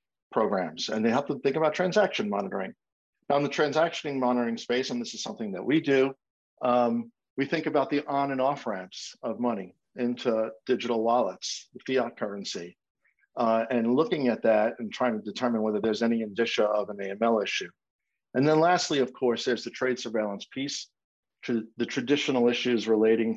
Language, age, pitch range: English, 50-69, 115-145 Hz